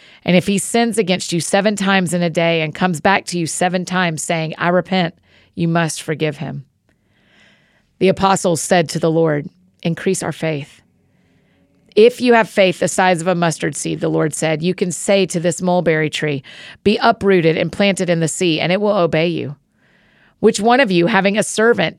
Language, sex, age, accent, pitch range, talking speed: English, female, 40-59, American, 165-195 Hz, 200 wpm